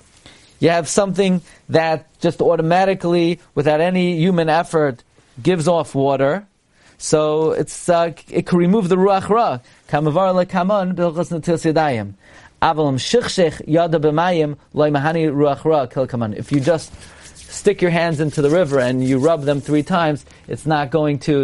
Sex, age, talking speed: male, 40-59, 115 wpm